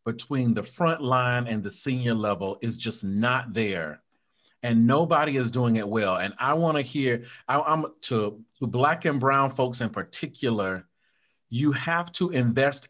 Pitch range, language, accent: 125-165 Hz, English, American